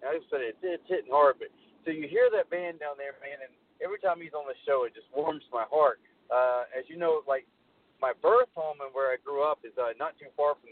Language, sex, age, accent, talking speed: English, male, 40-59, American, 265 wpm